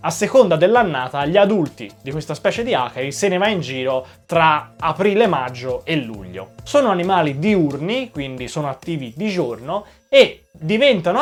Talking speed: 160 wpm